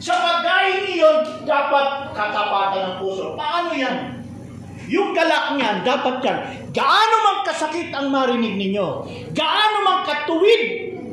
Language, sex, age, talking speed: Filipino, male, 40-59, 120 wpm